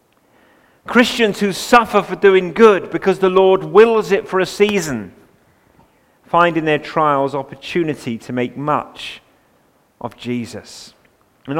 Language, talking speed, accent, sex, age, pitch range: English, 130 wpm, British, male, 40-59, 115-165 Hz